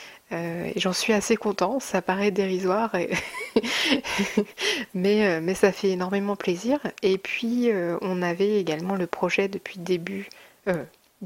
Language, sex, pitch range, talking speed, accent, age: French, female, 185-215 Hz, 150 wpm, French, 30-49